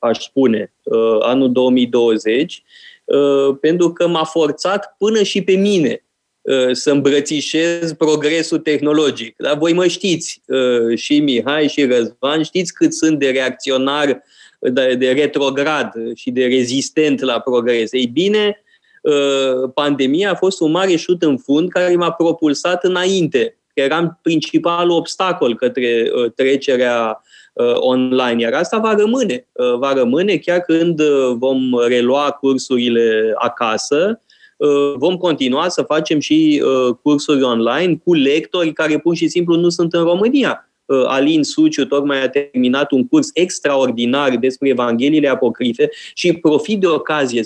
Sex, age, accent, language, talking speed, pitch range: male, 20-39, native, Romanian, 130 wpm, 130-175 Hz